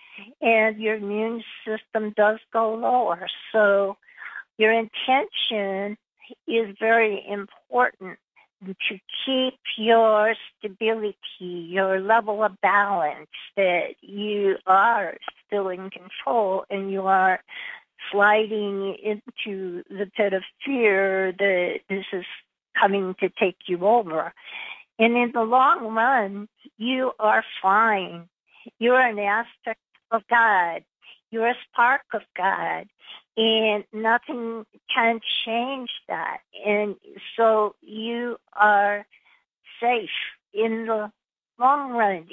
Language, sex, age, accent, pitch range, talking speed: English, female, 50-69, American, 200-230 Hz, 110 wpm